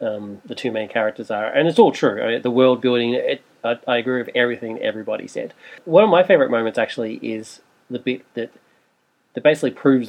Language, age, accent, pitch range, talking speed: English, 40-59, Australian, 110-125 Hz, 215 wpm